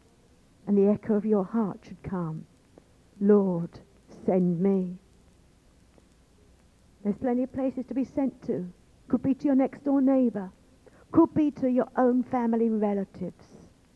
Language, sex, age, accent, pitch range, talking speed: English, female, 50-69, British, 175-250 Hz, 140 wpm